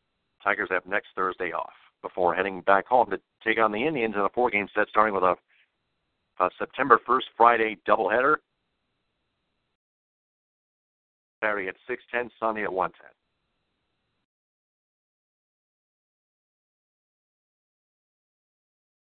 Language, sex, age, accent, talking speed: English, male, 50-69, American, 105 wpm